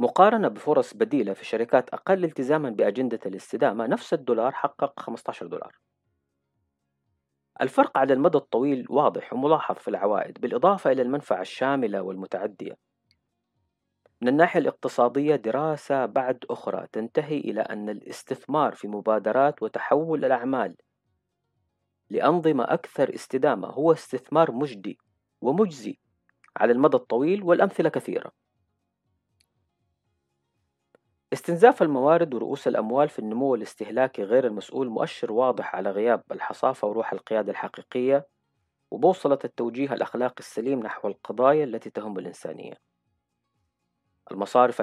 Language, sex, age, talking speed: Arabic, female, 40-59, 105 wpm